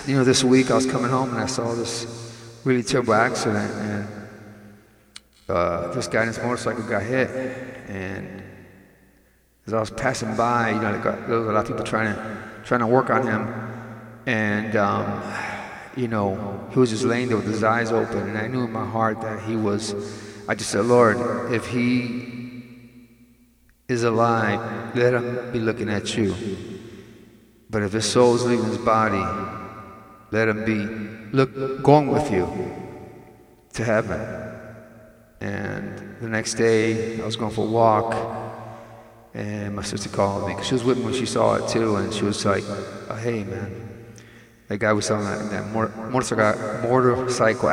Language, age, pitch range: English, 30-49, 105-120 Hz